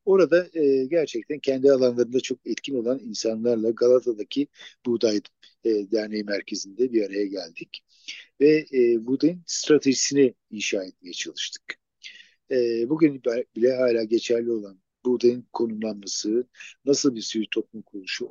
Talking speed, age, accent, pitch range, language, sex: 110 wpm, 50-69, native, 115-160 Hz, Turkish, male